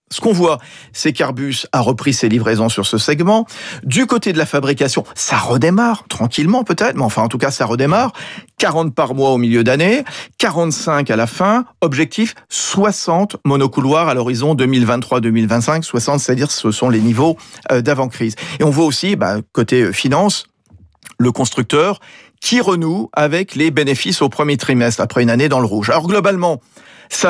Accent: French